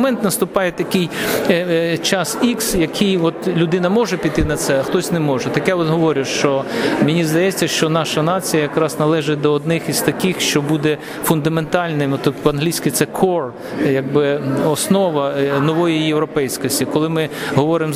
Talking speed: 160 wpm